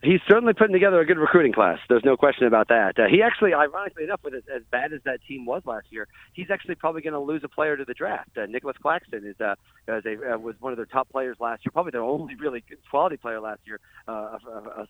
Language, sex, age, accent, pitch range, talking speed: English, male, 40-59, American, 115-160 Hz, 270 wpm